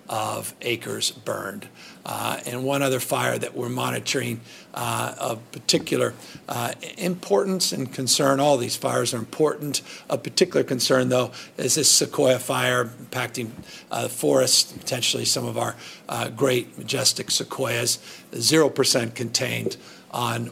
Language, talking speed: English, 135 wpm